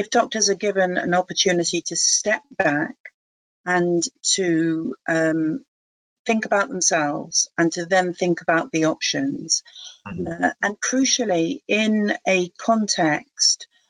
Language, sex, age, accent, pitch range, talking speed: English, female, 40-59, British, 155-195 Hz, 120 wpm